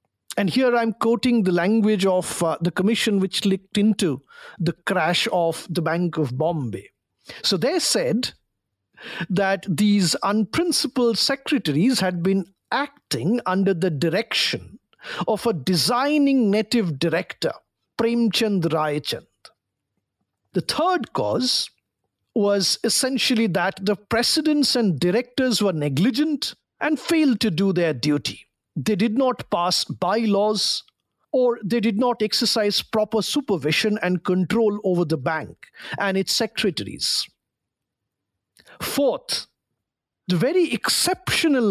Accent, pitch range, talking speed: Indian, 180-235 Hz, 120 wpm